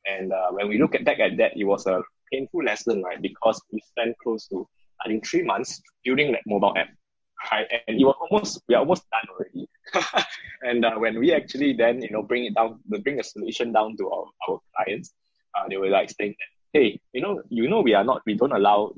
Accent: Malaysian